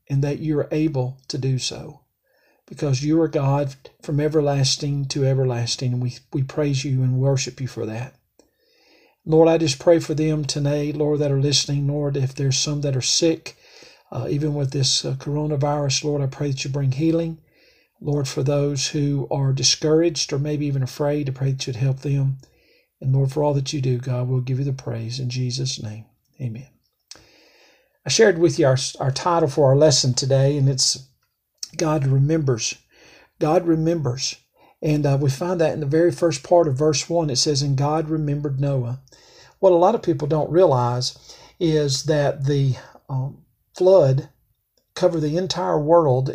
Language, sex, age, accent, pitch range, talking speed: English, male, 50-69, American, 135-155 Hz, 185 wpm